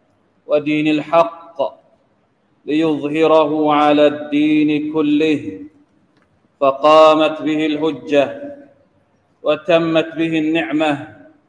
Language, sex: Thai, male